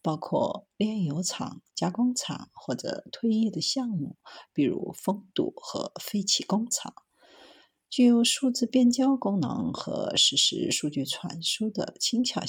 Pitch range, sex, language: 165-240 Hz, female, Chinese